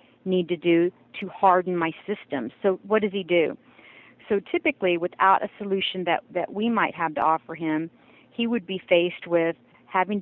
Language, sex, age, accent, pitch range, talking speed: English, female, 40-59, American, 175-220 Hz, 180 wpm